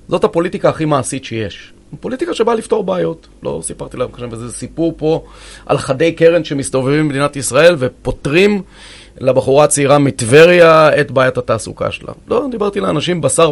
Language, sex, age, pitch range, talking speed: Hebrew, male, 30-49, 120-160 Hz, 150 wpm